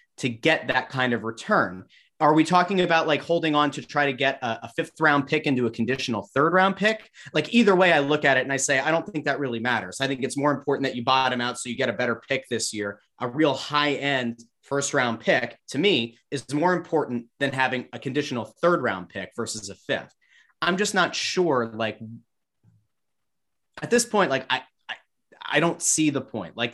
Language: English